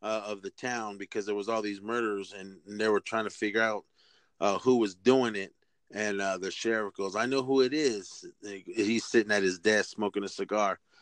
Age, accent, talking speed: 30-49, American, 225 wpm